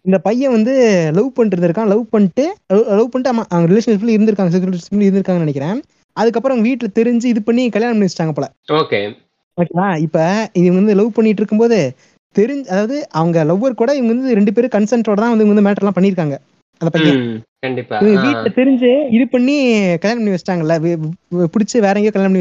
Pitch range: 190-240 Hz